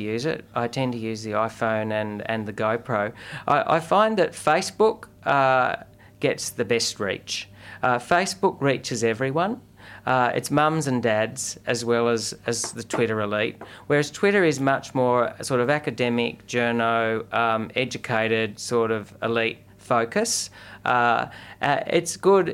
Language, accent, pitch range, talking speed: English, Australian, 110-135 Hz, 150 wpm